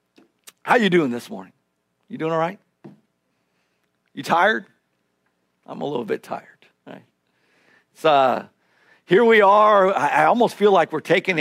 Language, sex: English, male